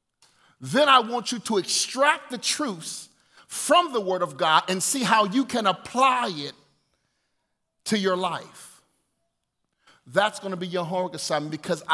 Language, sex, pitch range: English, male, 145-210 Hz